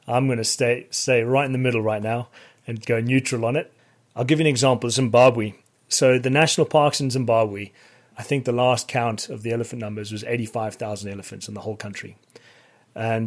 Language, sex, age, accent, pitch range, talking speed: English, male, 30-49, British, 110-125 Hz, 210 wpm